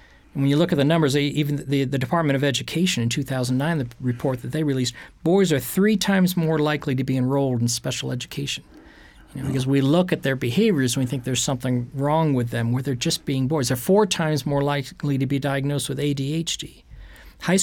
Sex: male